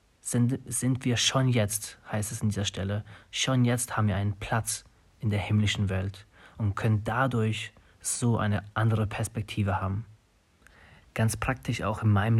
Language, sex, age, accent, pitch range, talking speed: German, male, 30-49, German, 105-115 Hz, 160 wpm